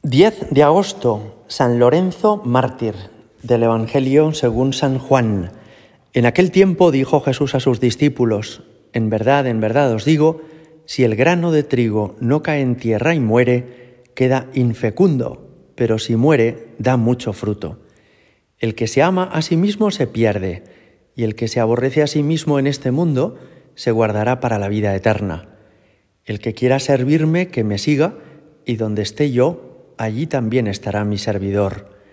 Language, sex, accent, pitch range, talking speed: Spanish, male, Spanish, 110-145 Hz, 160 wpm